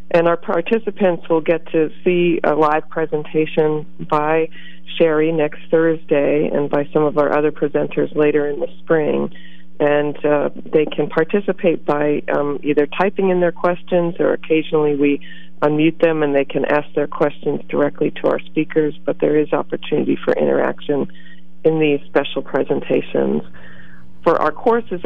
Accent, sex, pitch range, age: American, female, 145-165 Hz, 40-59